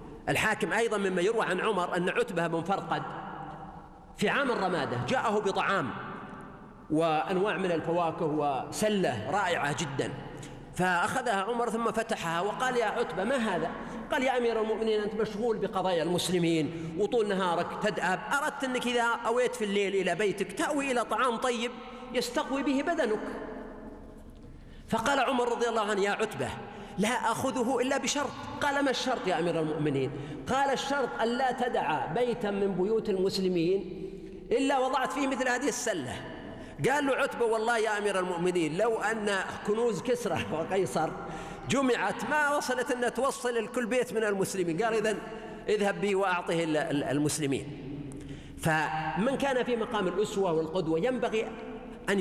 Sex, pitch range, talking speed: male, 175-240 Hz, 140 wpm